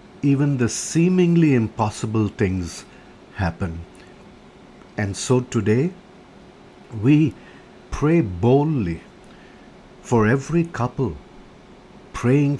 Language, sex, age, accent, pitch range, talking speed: English, male, 50-69, Indian, 90-120 Hz, 75 wpm